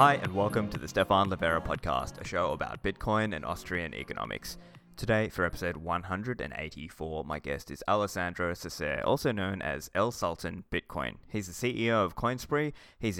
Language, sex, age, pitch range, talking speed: English, male, 20-39, 90-115 Hz, 165 wpm